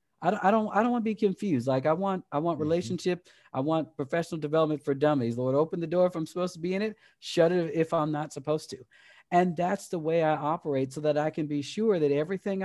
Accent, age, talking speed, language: American, 40-59, 245 wpm, English